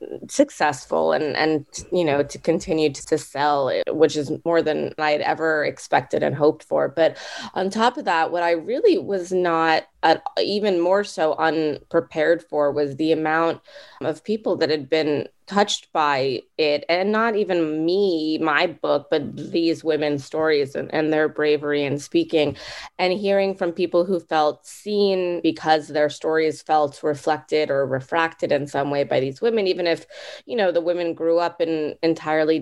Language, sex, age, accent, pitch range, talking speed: English, female, 20-39, American, 150-175 Hz, 175 wpm